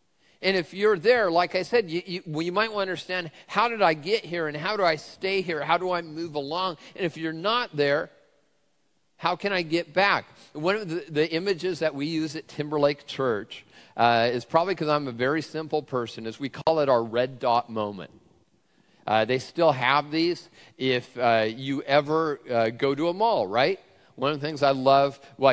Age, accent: 40-59, American